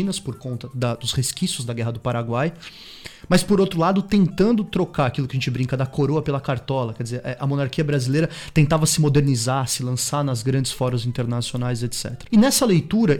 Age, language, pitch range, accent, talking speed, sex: 20-39, Portuguese, 130-170 Hz, Brazilian, 185 wpm, male